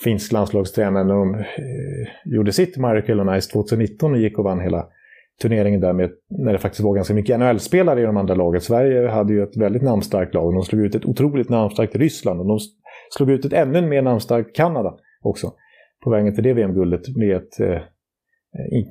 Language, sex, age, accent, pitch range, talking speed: Swedish, male, 30-49, Norwegian, 105-140 Hz, 205 wpm